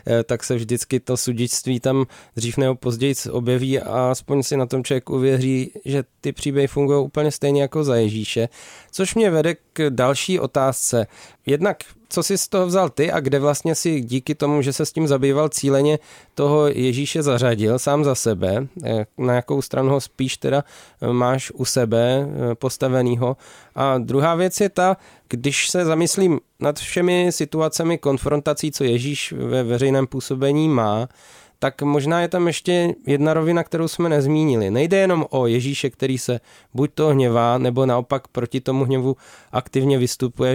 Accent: native